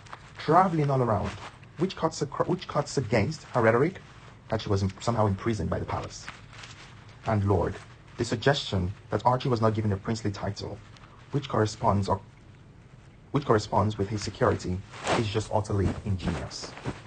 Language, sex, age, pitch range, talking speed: English, male, 30-49, 105-130 Hz, 150 wpm